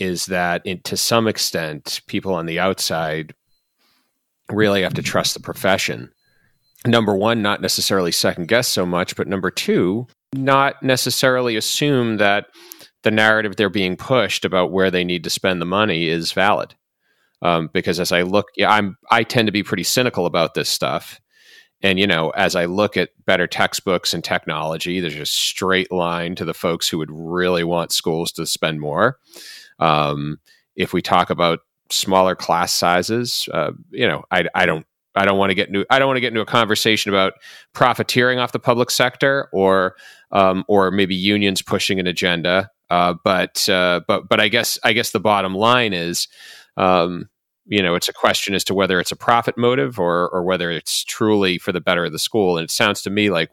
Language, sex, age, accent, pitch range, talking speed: English, male, 30-49, American, 90-110 Hz, 195 wpm